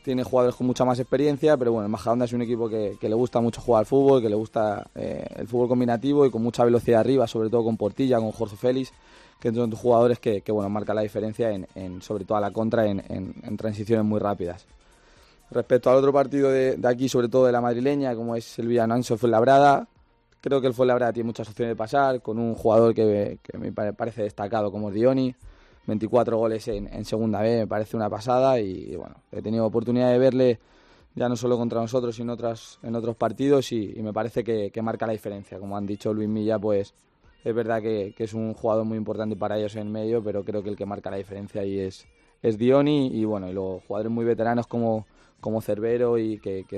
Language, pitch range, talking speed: Spanish, 105-125 Hz, 235 wpm